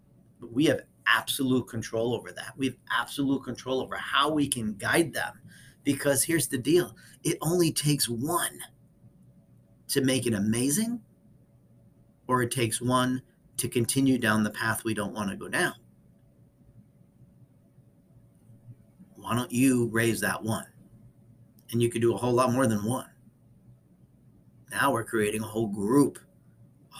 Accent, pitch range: American, 110-130 Hz